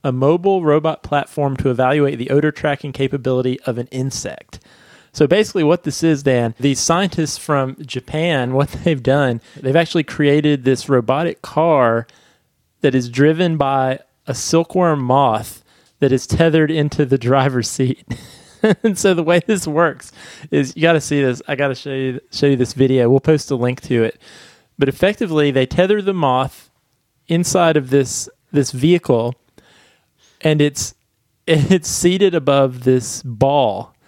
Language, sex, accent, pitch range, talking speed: English, male, American, 130-150 Hz, 160 wpm